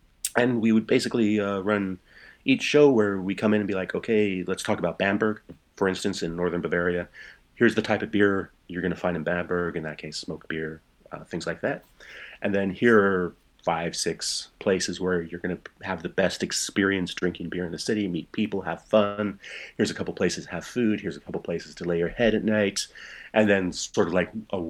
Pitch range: 85-105 Hz